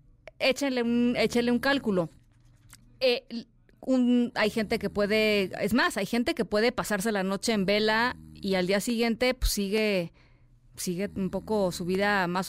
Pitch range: 170-235 Hz